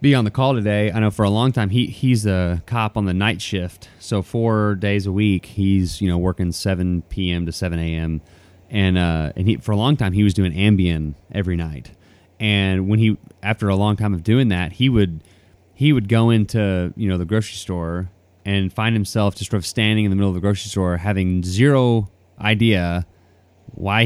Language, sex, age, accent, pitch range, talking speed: English, male, 30-49, American, 90-115 Hz, 215 wpm